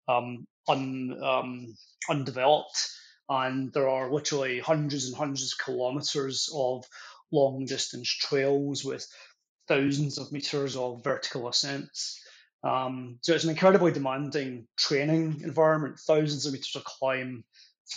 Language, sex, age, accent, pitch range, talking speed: English, male, 20-39, British, 130-155 Hz, 125 wpm